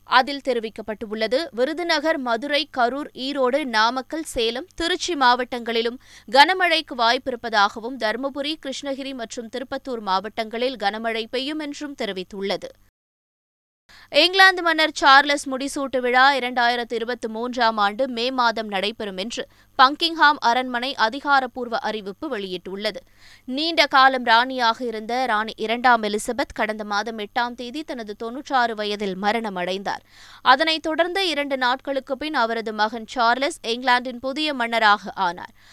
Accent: native